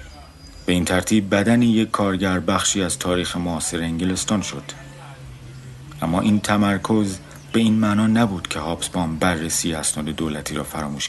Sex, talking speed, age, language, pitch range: male, 140 wpm, 50-69, Persian, 75-100 Hz